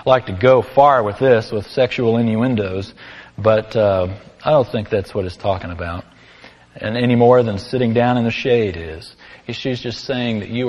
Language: English